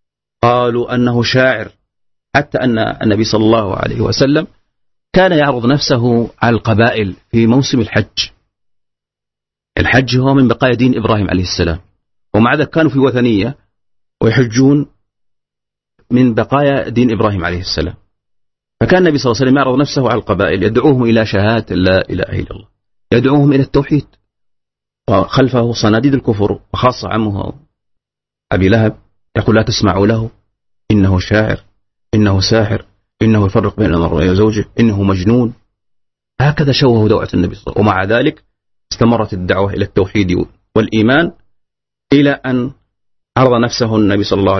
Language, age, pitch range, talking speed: Indonesian, 40-59, 100-125 Hz, 135 wpm